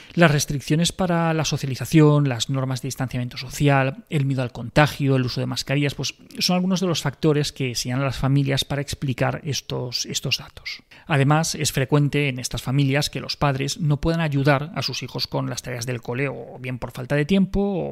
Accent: Spanish